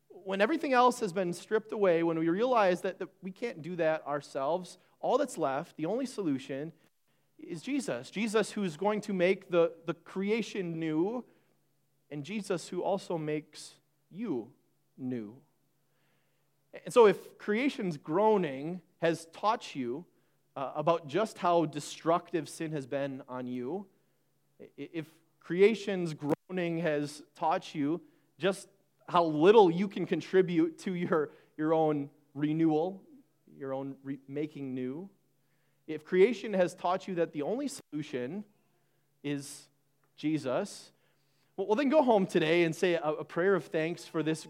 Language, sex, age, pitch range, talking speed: English, male, 30-49, 150-195 Hz, 145 wpm